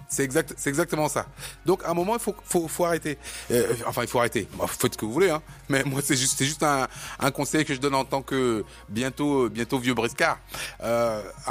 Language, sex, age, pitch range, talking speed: French, male, 30-49, 125-150 Hz, 240 wpm